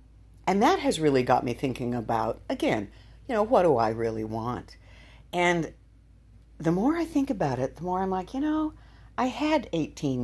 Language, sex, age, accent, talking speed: English, female, 50-69, American, 190 wpm